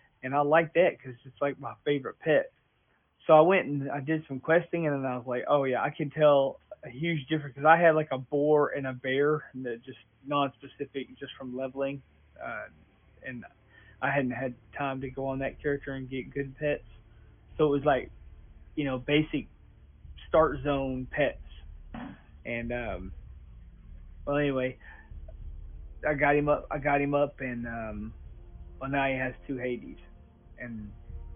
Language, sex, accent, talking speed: English, male, American, 175 wpm